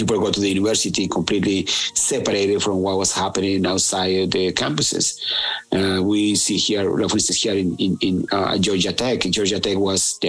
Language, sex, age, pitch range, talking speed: English, male, 50-69, 100-110 Hz, 180 wpm